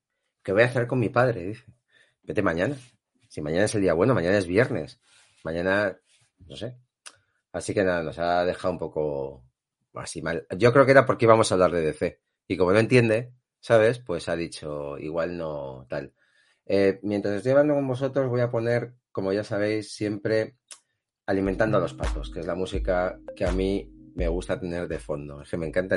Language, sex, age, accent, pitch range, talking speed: Spanish, male, 40-59, Spanish, 90-120 Hz, 200 wpm